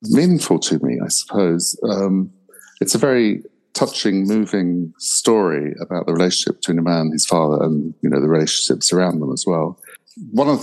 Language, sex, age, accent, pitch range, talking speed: English, male, 50-69, British, 85-100 Hz, 180 wpm